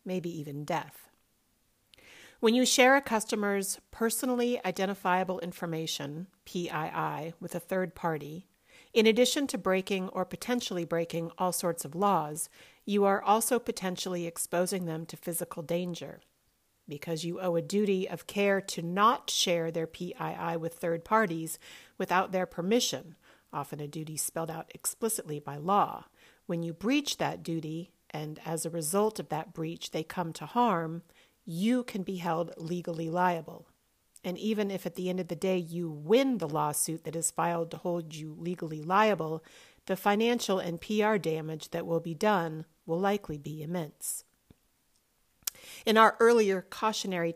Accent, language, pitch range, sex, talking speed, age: American, English, 165-200 Hz, female, 155 wpm, 40-59